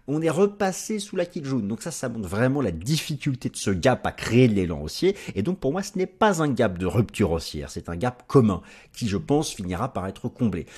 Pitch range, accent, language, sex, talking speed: 100-145 Hz, French, French, male, 250 wpm